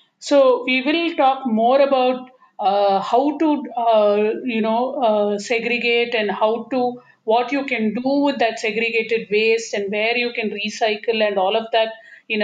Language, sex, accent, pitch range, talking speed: Tamil, female, native, 215-255 Hz, 170 wpm